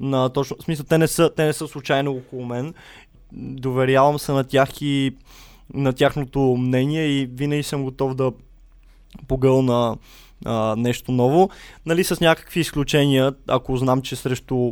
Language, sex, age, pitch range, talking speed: Bulgarian, male, 20-39, 130-155 Hz, 155 wpm